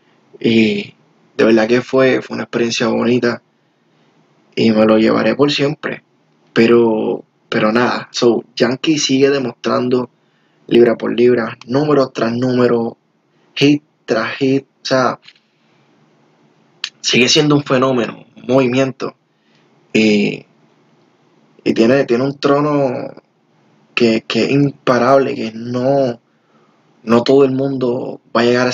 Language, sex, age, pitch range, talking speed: Spanish, male, 20-39, 115-135 Hz, 125 wpm